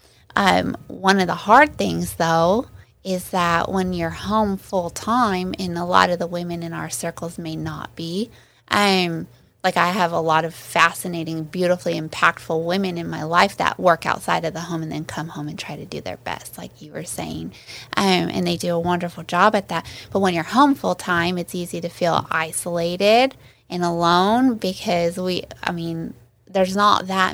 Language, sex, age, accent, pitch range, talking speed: English, female, 20-39, American, 165-190 Hz, 195 wpm